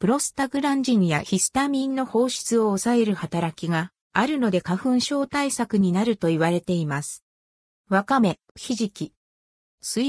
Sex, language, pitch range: female, Japanese, 170-255 Hz